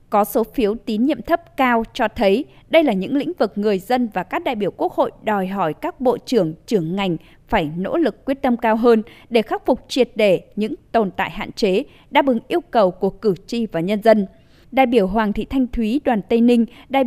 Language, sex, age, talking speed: Vietnamese, female, 20-39, 230 wpm